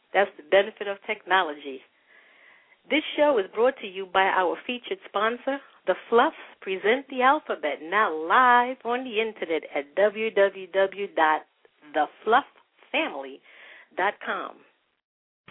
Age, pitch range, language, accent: 50-69, 200-255 Hz, English, American